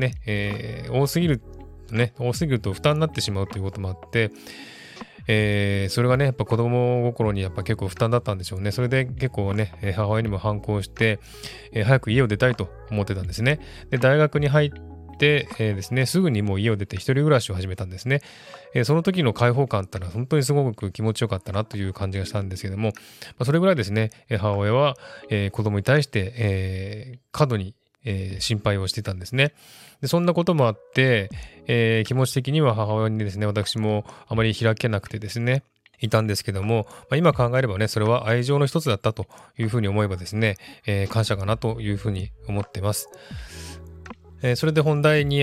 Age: 20-39